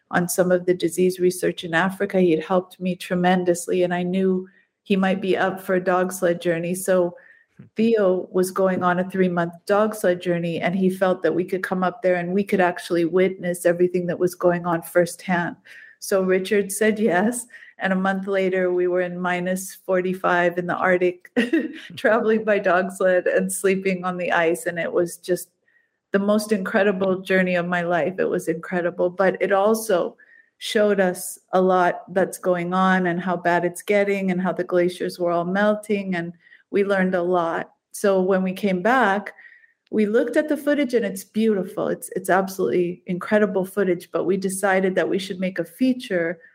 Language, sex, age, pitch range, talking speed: English, female, 50-69, 180-200 Hz, 190 wpm